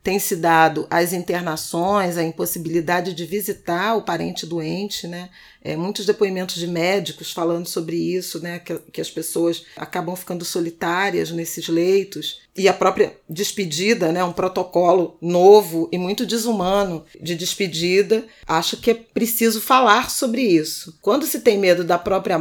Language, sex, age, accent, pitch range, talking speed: Portuguese, female, 40-59, Brazilian, 170-205 Hz, 155 wpm